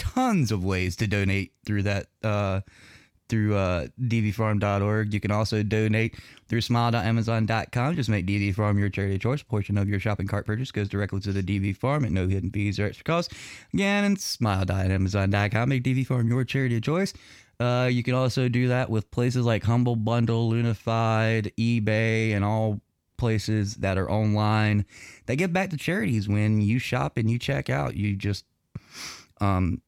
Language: English